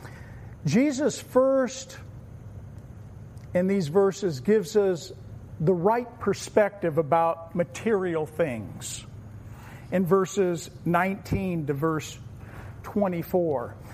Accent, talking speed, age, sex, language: American, 80 wpm, 50-69, male, English